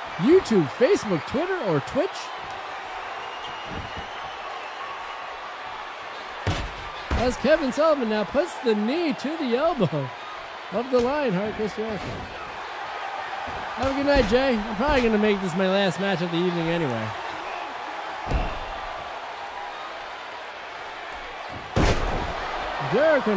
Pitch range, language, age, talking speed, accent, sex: 215-300 Hz, English, 50-69, 100 wpm, American, male